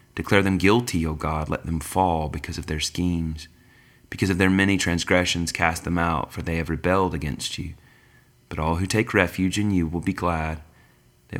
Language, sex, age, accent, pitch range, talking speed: English, male, 30-49, American, 85-100 Hz, 195 wpm